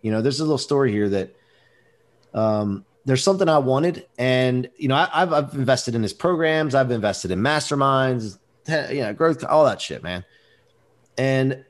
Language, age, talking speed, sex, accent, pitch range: English, 30-49, 175 wpm, male, American, 120-155 Hz